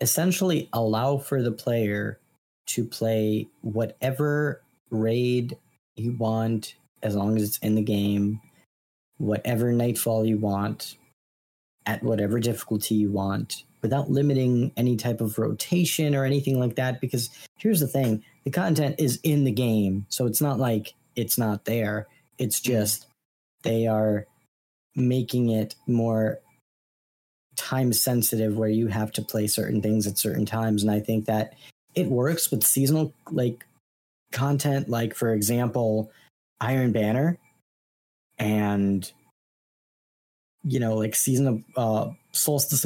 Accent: American